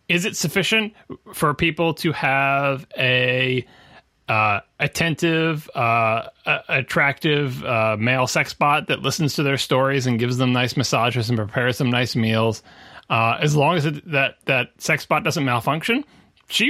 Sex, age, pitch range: male, 30-49, 120-160 Hz